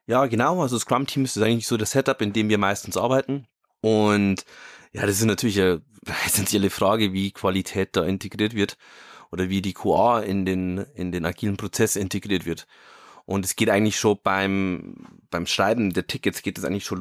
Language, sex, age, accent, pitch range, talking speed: German, male, 30-49, German, 100-120 Hz, 190 wpm